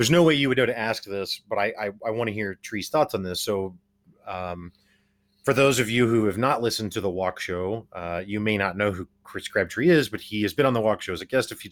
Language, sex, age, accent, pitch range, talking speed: English, male, 30-49, American, 95-130 Hz, 285 wpm